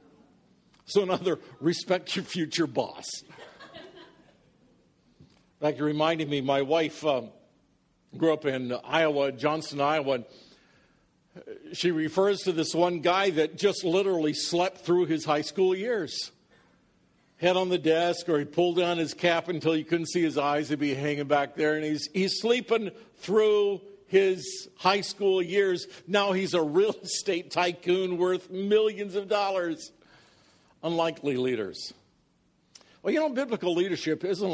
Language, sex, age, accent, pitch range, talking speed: English, male, 60-79, American, 155-195 Hz, 150 wpm